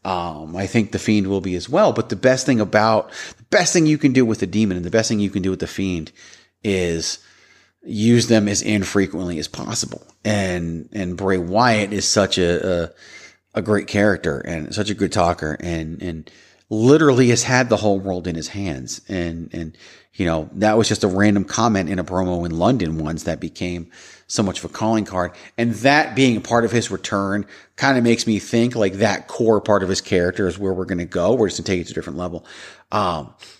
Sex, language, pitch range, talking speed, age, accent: male, English, 90-115 Hz, 230 wpm, 30-49, American